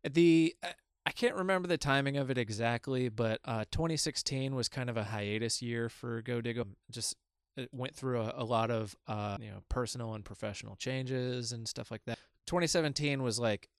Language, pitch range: English, 105-130 Hz